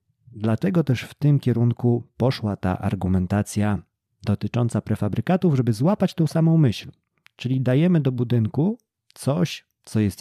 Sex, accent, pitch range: male, native, 100-135 Hz